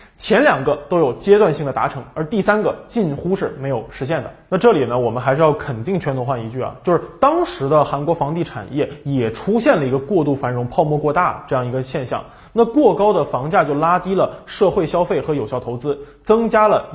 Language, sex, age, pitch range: Chinese, male, 20-39, 140-205 Hz